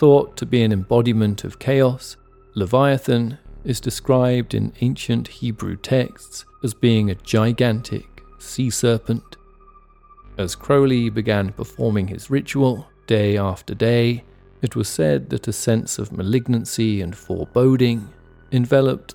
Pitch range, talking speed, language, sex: 100-125 Hz, 125 wpm, English, male